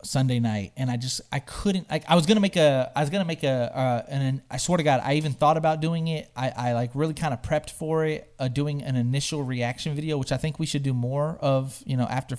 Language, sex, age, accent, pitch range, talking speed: English, male, 30-49, American, 120-155 Hz, 275 wpm